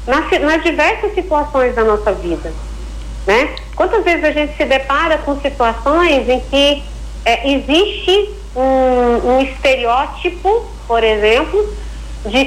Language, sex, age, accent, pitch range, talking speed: Portuguese, female, 40-59, Brazilian, 225-310 Hz, 120 wpm